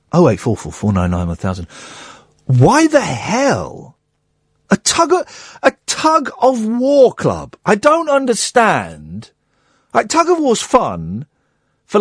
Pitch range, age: 180-280 Hz, 50-69